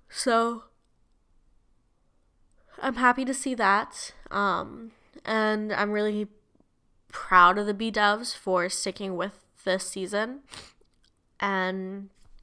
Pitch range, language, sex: 190-220 Hz, English, female